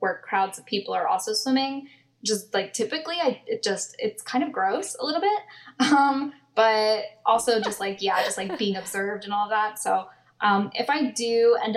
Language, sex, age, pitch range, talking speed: English, female, 10-29, 200-255 Hz, 200 wpm